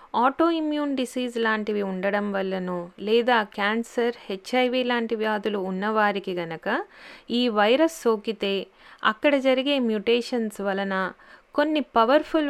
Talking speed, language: 100 wpm, Telugu